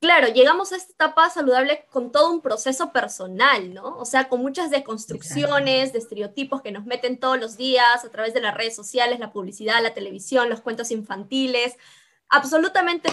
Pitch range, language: 235-285 Hz, Spanish